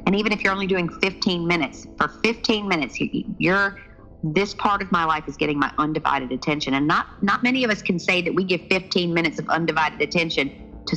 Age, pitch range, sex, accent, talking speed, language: 40-59, 145-180 Hz, female, American, 215 wpm, English